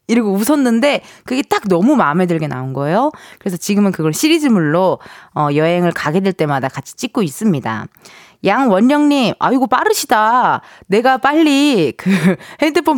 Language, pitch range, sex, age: Korean, 175-270 Hz, female, 20-39